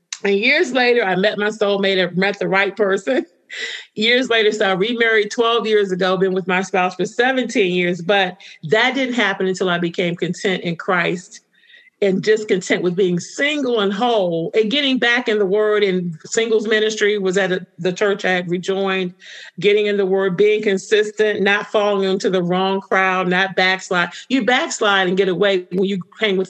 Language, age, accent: English, 40-59, American